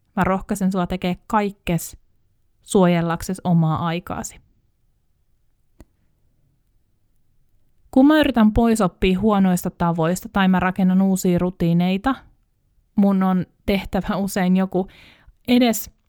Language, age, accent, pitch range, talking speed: Finnish, 20-39, native, 180-220 Hz, 95 wpm